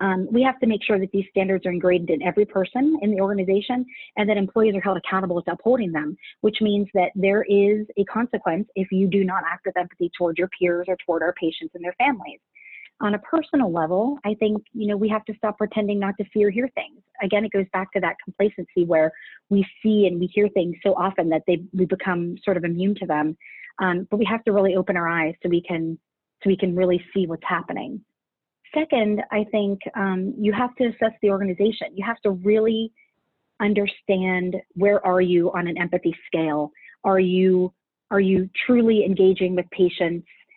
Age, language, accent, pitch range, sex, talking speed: 30-49, English, American, 180-210 Hz, female, 210 wpm